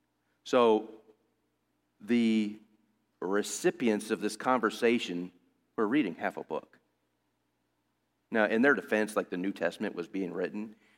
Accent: American